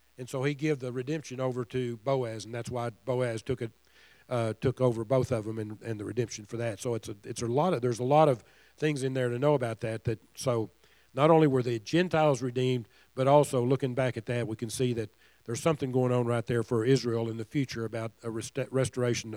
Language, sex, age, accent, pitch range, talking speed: English, male, 50-69, American, 115-135 Hz, 240 wpm